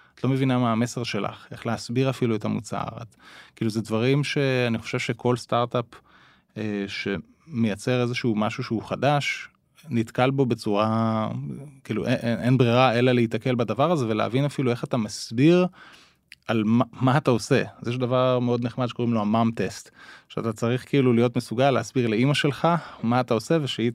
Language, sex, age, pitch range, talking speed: Hebrew, male, 20-39, 115-135 Hz, 165 wpm